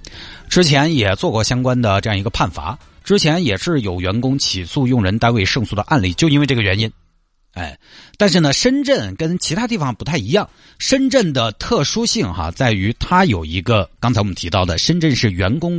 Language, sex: Chinese, male